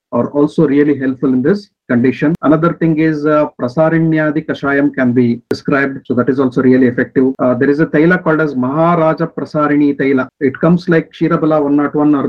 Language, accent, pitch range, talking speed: English, Indian, 135-160 Hz, 190 wpm